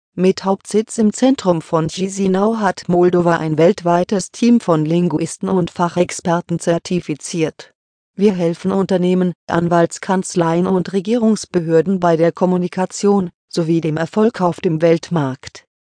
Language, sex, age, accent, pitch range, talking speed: English, female, 40-59, German, 165-195 Hz, 120 wpm